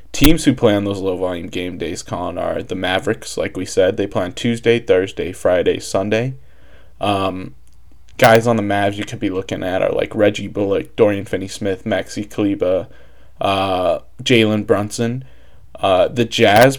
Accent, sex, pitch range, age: American, male, 95-115 Hz, 20-39